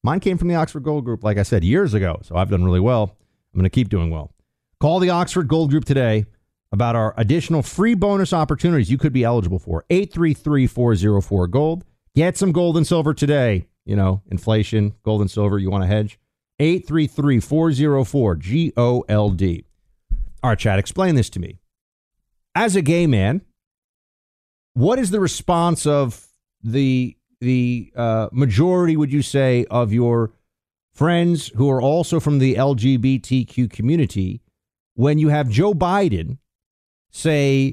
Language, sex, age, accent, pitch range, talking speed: English, male, 40-59, American, 115-170 Hz, 155 wpm